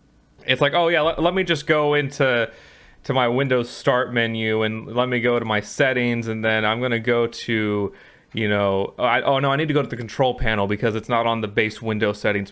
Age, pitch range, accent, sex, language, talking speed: 20-39, 105-125 Hz, American, male, English, 240 wpm